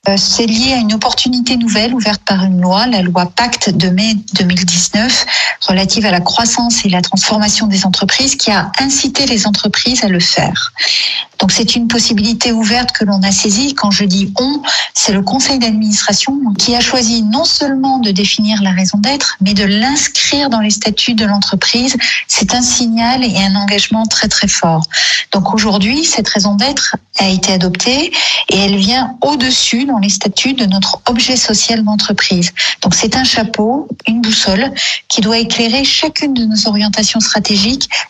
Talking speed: 175 wpm